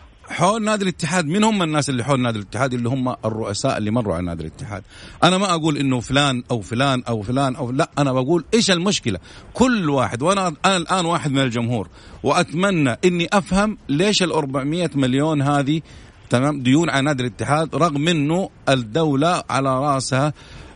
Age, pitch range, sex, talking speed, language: 50-69, 125-170 Hz, male, 170 wpm, Arabic